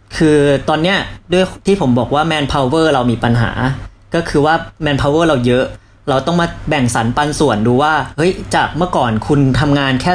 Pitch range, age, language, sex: 115-155 Hz, 20-39, Thai, female